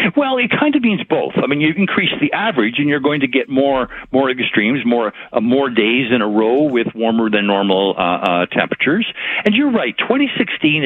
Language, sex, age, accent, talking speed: English, male, 60-79, American, 210 wpm